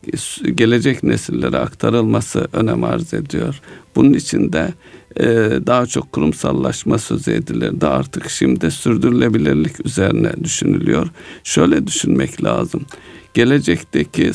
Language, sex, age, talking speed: Turkish, male, 60-79, 100 wpm